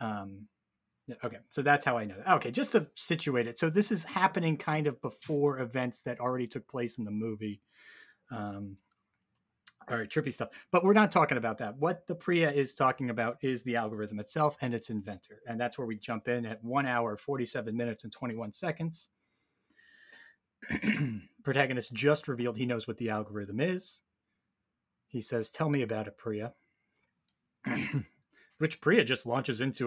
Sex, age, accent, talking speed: male, 30-49, American, 175 wpm